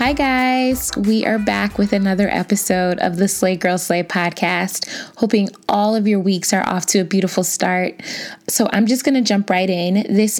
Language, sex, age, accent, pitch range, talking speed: English, female, 20-39, American, 180-210 Hz, 195 wpm